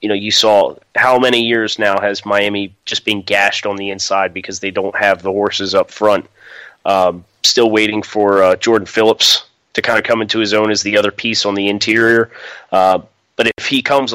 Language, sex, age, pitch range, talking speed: English, male, 30-49, 100-115 Hz, 210 wpm